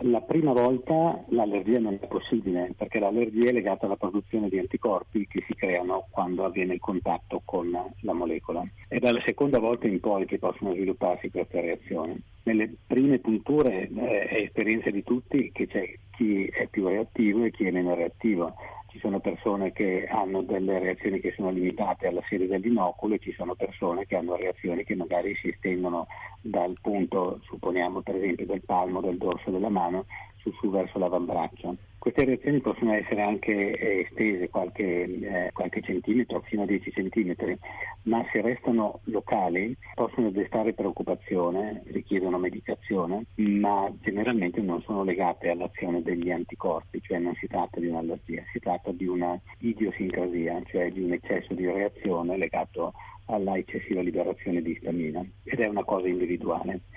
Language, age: Italian, 50-69